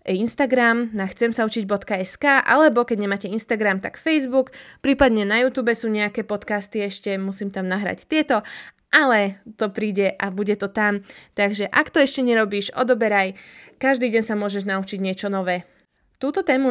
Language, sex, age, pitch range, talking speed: Slovak, female, 20-39, 195-240 Hz, 155 wpm